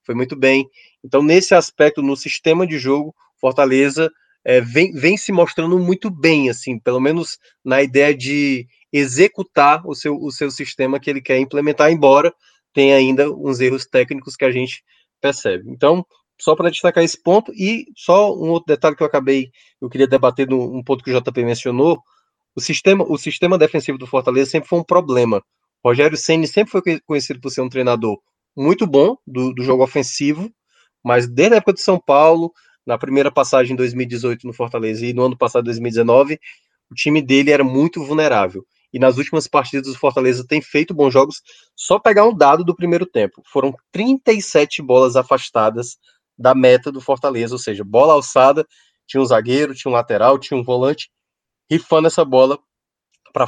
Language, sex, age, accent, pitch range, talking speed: Portuguese, male, 20-39, Brazilian, 130-160 Hz, 175 wpm